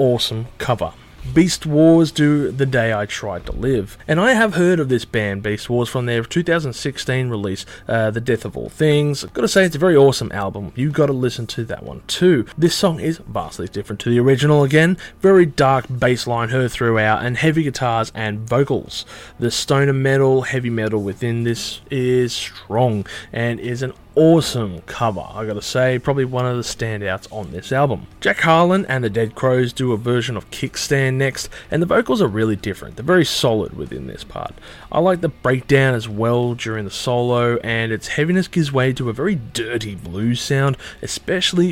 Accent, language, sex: Australian, English, male